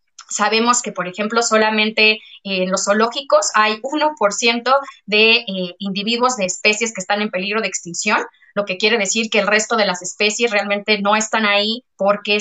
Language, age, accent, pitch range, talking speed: Spanish, 20-39, Mexican, 190-225 Hz, 175 wpm